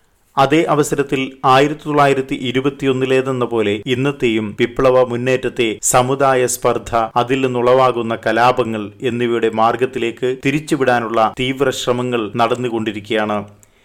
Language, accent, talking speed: Malayalam, native, 80 wpm